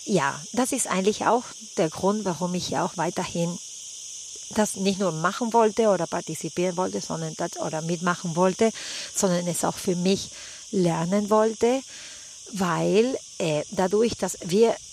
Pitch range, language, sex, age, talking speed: 165-205 Hz, English, female, 40-59, 150 wpm